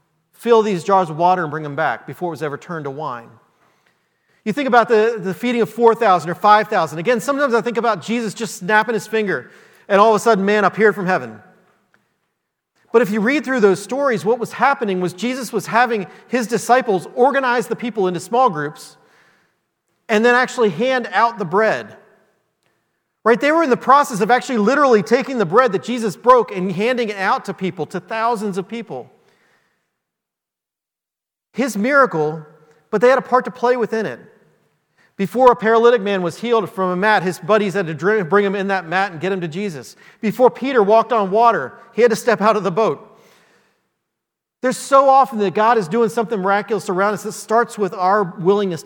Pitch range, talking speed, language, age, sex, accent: 185-235 Hz, 200 wpm, English, 40-59, male, American